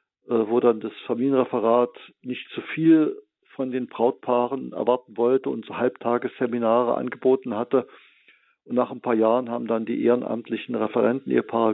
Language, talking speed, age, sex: German, 150 wpm, 50-69, male